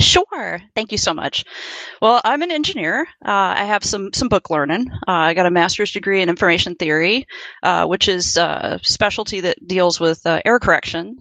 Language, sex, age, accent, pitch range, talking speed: English, female, 30-49, American, 170-205 Hz, 195 wpm